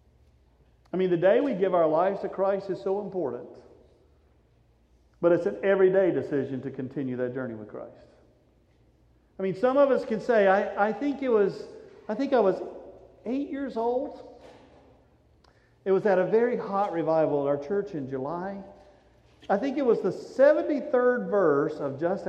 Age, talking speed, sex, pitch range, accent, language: 50-69, 170 wpm, male, 140-210 Hz, American, English